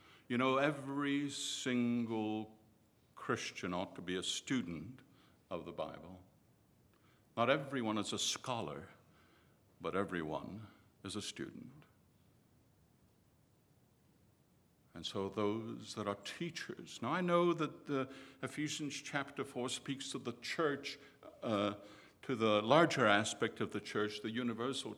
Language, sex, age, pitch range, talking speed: English, male, 60-79, 105-150 Hz, 120 wpm